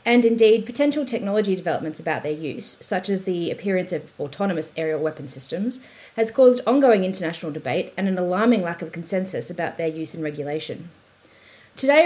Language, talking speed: English, 170 wpm